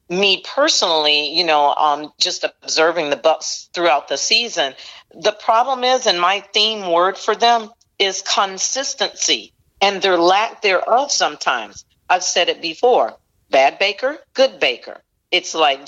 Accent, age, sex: American, 40-59, female